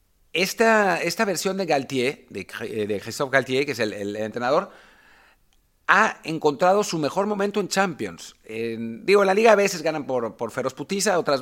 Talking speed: 180 wpm